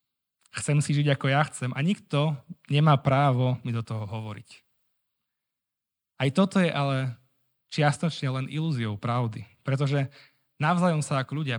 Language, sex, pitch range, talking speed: Slovak, male, 120-145 Hz, 140 wpm